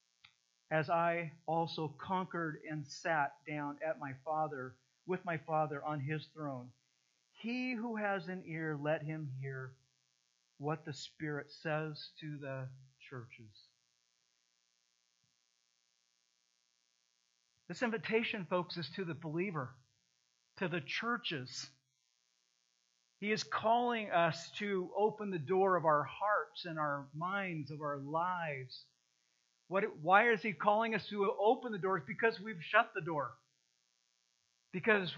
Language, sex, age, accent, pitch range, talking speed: English, male, 50-69, American, 135-225 Hz, 125 wpm